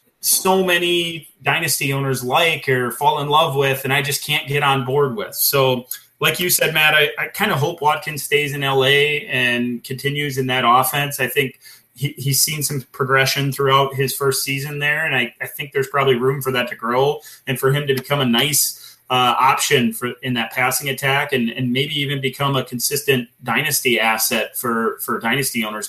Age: 30-49